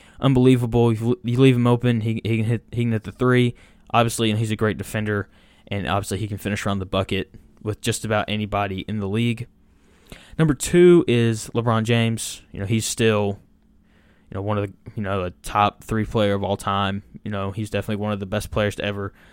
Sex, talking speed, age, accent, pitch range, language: male, 215 wpm, 10-29, American, 105-120 Hz, English